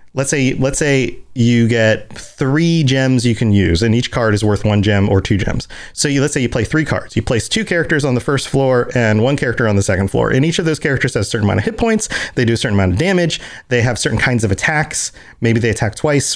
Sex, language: male, English